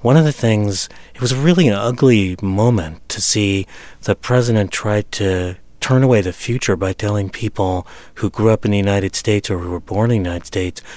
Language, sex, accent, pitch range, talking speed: English, male, American, 95-115 Hz, 210 wpm